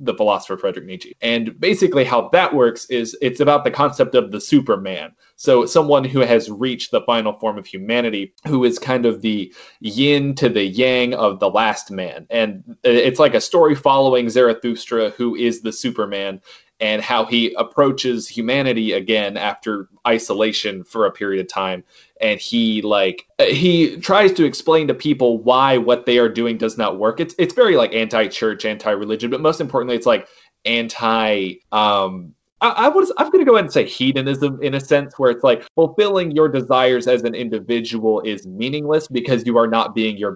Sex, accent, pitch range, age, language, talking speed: male, American, 110-140 Hz, 20-39, English, 185 wpm